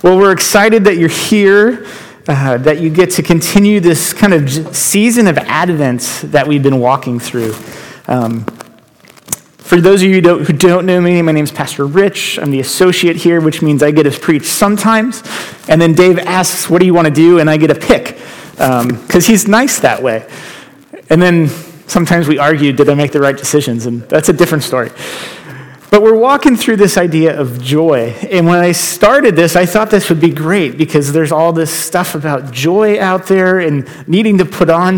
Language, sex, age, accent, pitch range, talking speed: English, male, 30-49, American, 150-185 Hz, 200 wpm